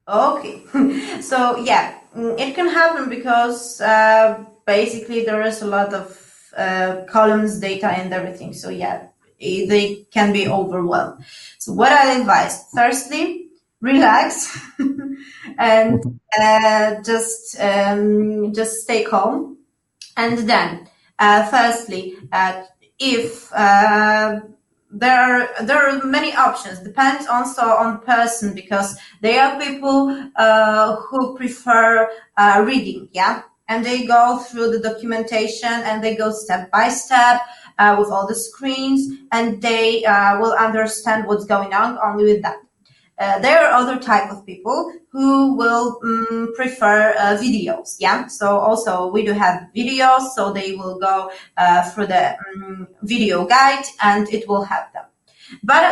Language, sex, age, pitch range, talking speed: English, female, 20-39, 200-250 Hz, 135 wpm